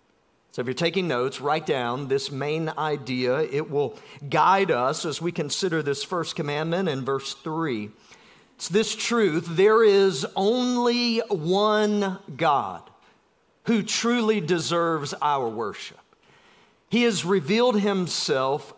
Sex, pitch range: male, 165-225 Hz